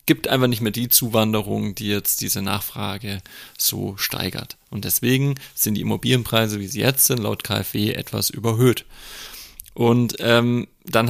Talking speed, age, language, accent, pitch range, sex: 150 wpm, 30-49, German, German, 110-125 Hz, male